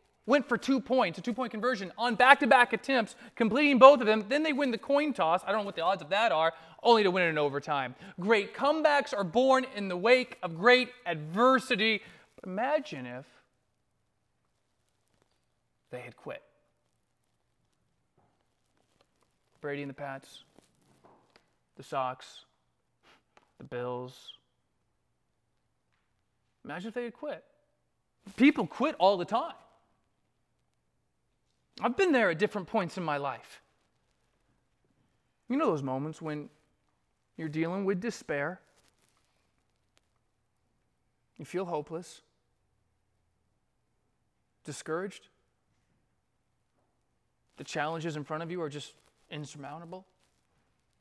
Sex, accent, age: male, American, 30-49